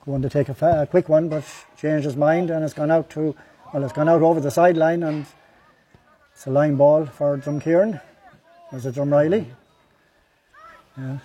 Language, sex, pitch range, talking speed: English, male, 150-180 Hz, 190 wpm